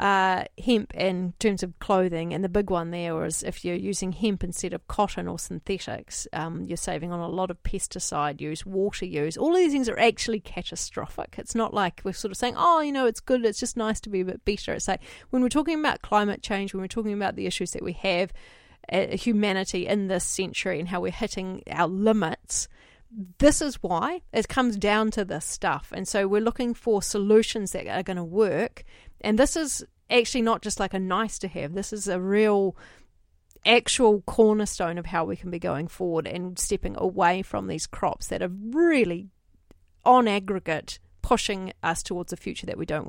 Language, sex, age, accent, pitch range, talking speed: English, female, 40-59, Australian, 180-225 Hz, 210 wpm